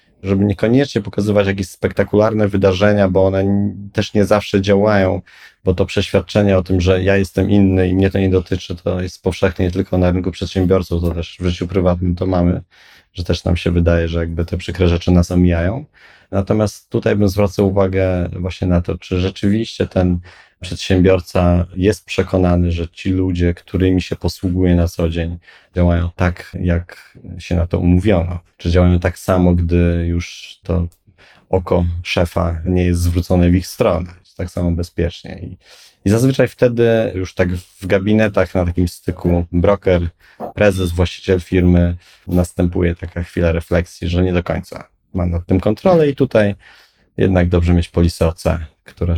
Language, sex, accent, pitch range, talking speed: Polish, male, native, 85-95 Hz, 165 wpm